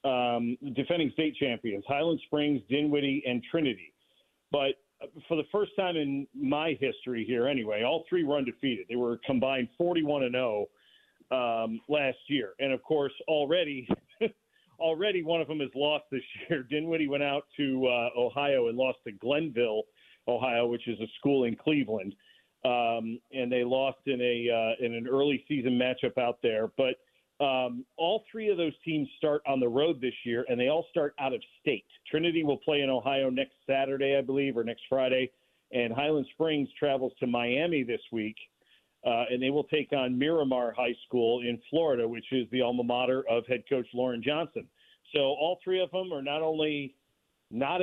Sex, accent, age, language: male, American, 40-59, English